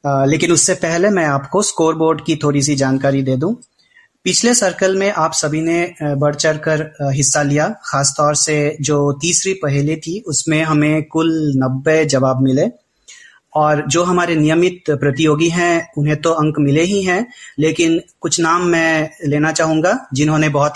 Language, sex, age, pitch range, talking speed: Hindi, male, 30-49, 140-160 Hz, 165 wpm